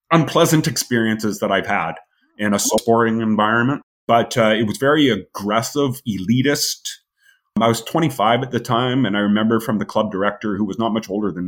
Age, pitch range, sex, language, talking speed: 30-49, 105-140 Hz, male, English, 185 wpm